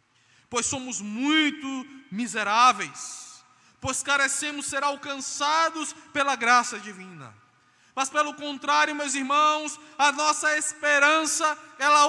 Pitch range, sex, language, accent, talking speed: 225-315 Hz, male, Portuguese, Brazilian, 100 wpm